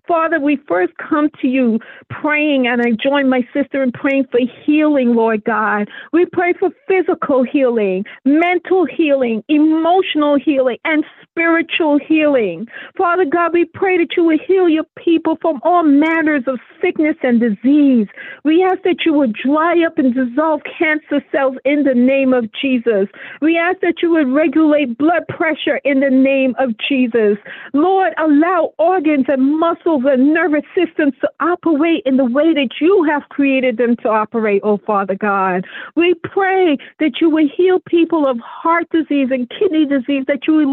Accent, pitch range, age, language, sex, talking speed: American, 250-325 Hz, 50-69, English, female, 170 wpm